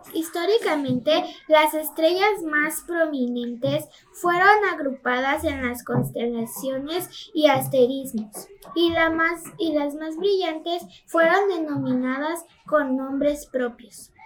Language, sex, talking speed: Spanish, female, 95 wpm